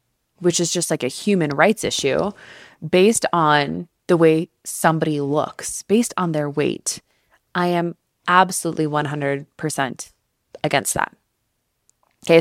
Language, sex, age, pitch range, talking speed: English, female, 20-39, 145-175 Hz, 120 wpm